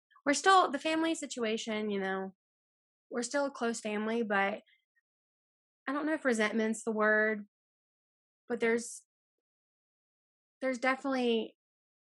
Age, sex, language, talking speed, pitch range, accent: 10-29, female, English, 120 wpm, 215-265 Hz, American